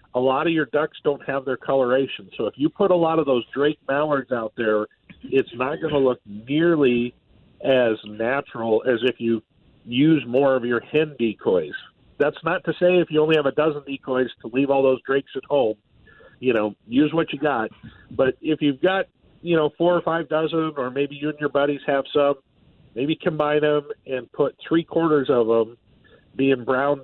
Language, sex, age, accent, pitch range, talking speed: English, male, 50-69, American, 125-160 Hz, 200 wpm